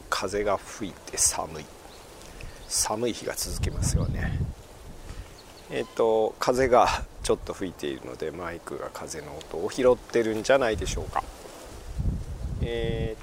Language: Japanese